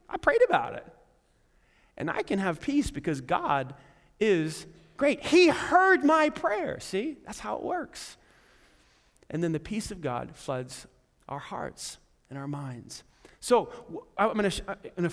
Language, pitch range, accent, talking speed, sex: English, 140-205 Hz, American, 155 wpm, male